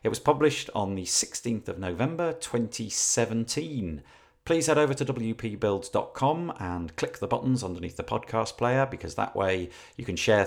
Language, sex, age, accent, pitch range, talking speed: English, male, 40-59, British, 90-125 Hz, 160 wpm